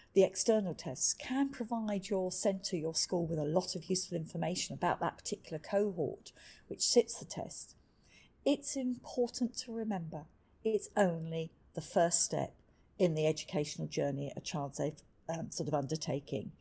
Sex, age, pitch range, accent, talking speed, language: female, 50-69, 155-205 Hz, British, 150 wpm, English